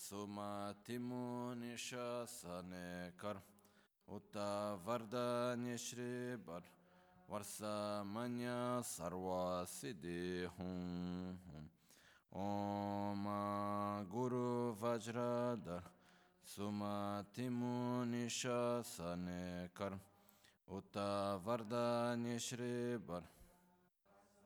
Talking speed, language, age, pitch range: 40 wpm, Italian, 20-39, 90-120 Hz